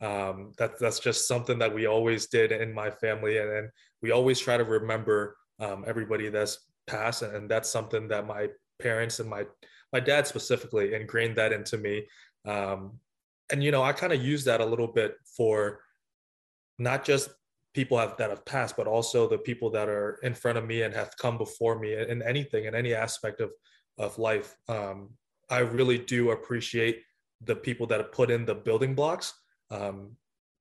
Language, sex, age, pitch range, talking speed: English, male, 20-39, 110-125 Hz, 190 wpm